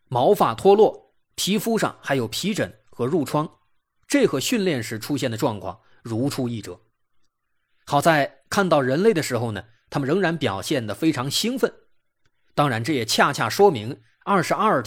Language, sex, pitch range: Chinese, male, 110-160 Hz